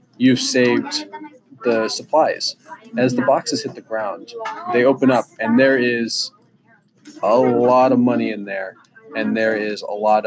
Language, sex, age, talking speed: English, male, 20-39, 160 wpm